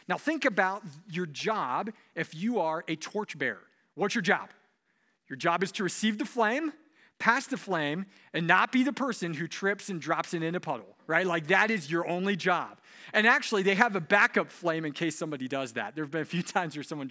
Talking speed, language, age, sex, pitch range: 215 wpm, English, 40-59, male, 160-220 Hz